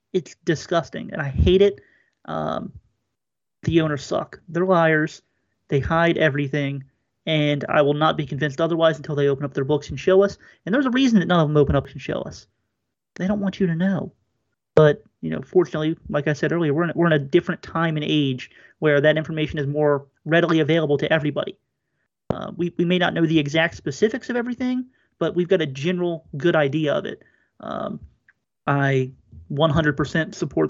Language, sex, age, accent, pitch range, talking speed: English, male, 30-49, American, 140-170 Hz, 195 wpm